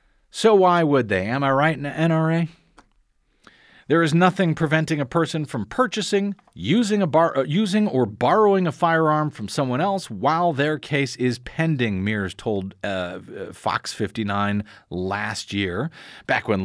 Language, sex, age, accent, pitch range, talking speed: English, male, 50-69, American, 115-160 Hz, 155 wpm